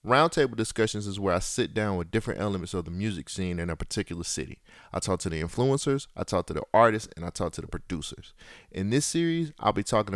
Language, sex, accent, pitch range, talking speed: English, male, American, 95-115 Hz, 235 wpm